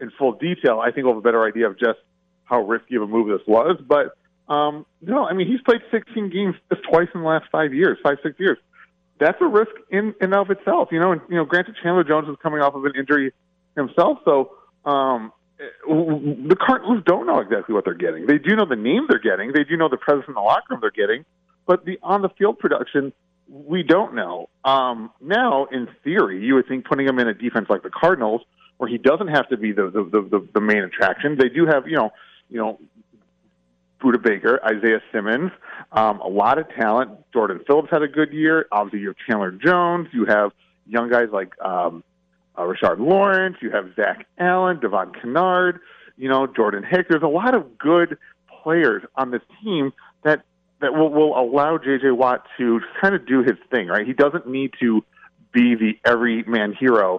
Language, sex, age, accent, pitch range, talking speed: English, male, 40-59, American, 120-180 Hz, 215 wpm